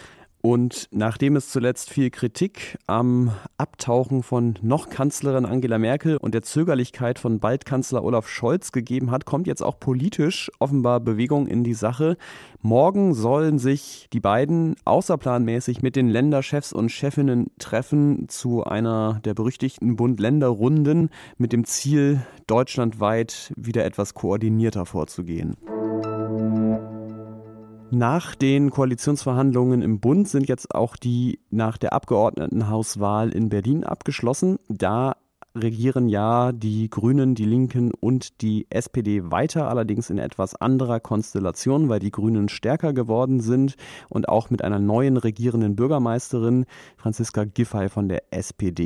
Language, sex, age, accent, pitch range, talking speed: German, male, 30-49, German, 110-135 Hz, 130 wpm